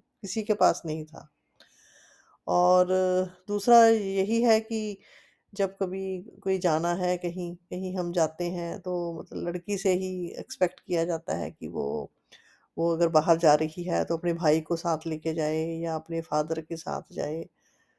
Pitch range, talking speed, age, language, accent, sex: 175-210 Hz, 165 wpm, 20-39, Hindi, native, female